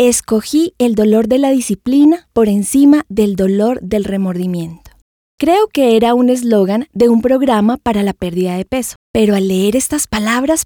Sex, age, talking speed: female, 20-39, 170 wpm